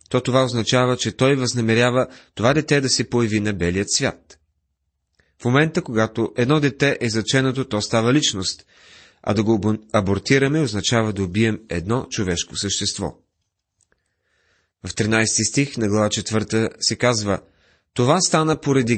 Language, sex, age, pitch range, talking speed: Bulgarian, male, 30-49, 100-130 Hz, 140 wpm